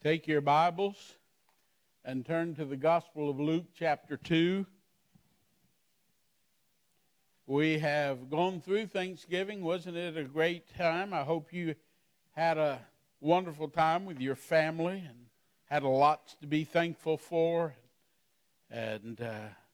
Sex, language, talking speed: male, English, 125 wpm